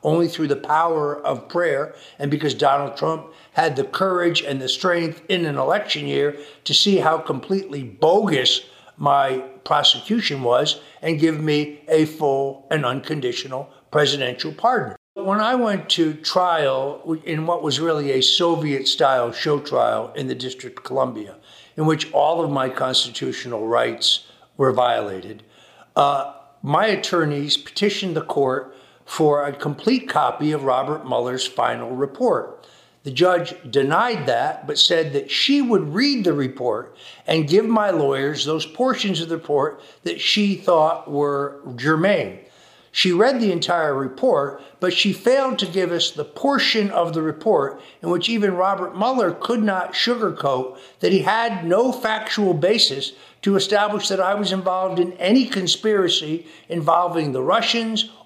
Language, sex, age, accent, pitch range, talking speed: English, male, 60-79, American, 140-190 Hz, 150 wpm